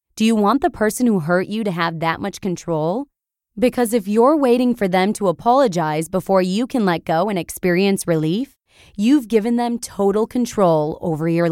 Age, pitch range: 20-39, 175-240 Hz